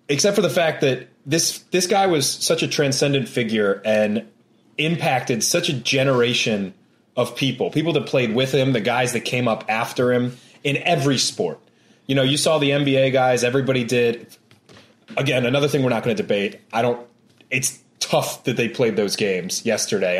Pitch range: 115-145 Hz